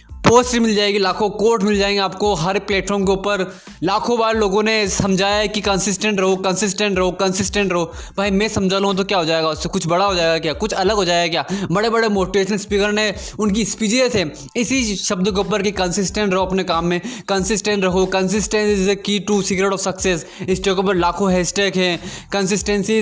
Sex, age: male, 20-39